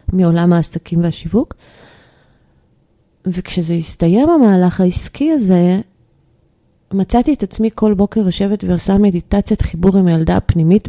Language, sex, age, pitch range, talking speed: Hebrew, female, 30-49, 180-225 Hz, 110 wpm